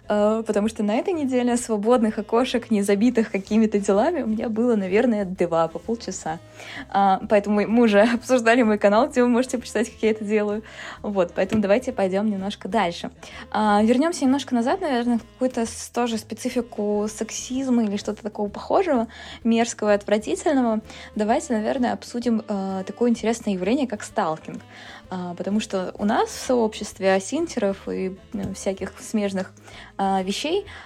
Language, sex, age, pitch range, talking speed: Russian, female, 20-39, 195-240 Hz, 140 wpm